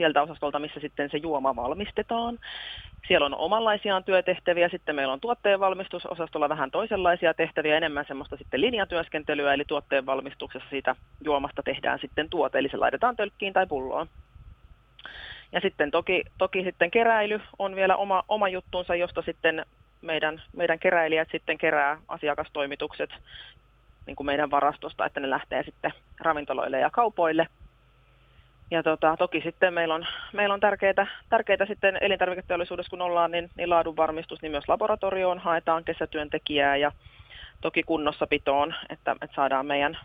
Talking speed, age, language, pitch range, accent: 140 wpm, 30-49, Finnish, 145-185 Hz, native